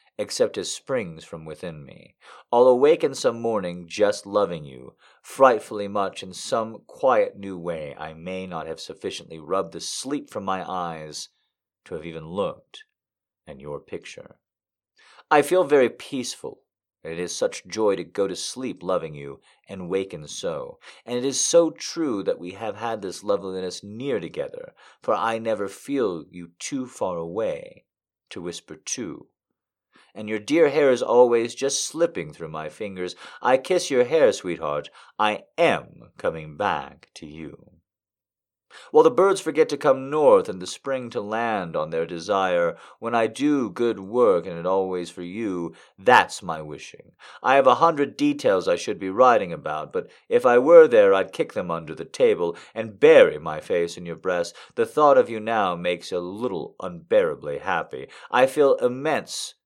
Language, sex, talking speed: English, male, 170 wpm